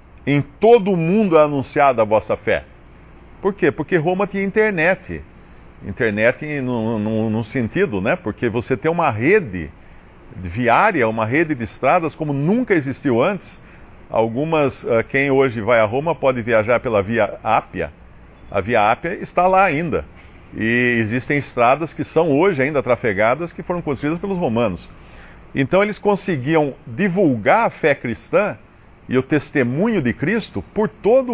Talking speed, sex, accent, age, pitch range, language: 150 wpm, male, Brazilian, 50-69, 115-160 Hz, Portuguese